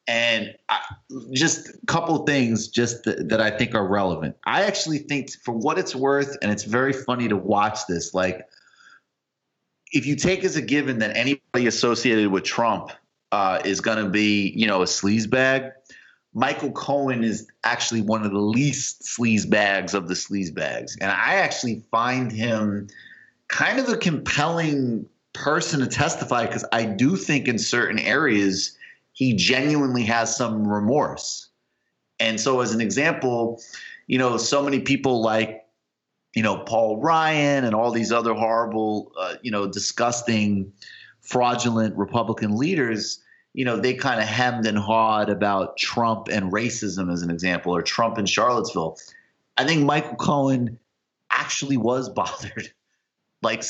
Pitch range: 105-135 Hz